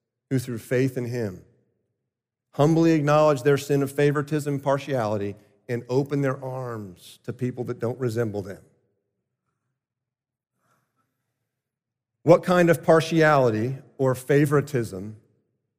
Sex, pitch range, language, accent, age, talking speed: male, 125-160 Hz, English, American, 40-59, 105 wpm